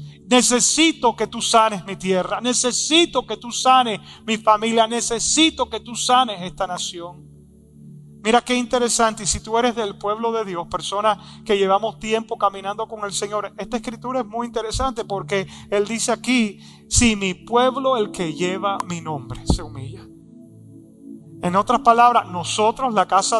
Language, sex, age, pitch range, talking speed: English, male, 30-49, 195-245 Hz, 160 wpm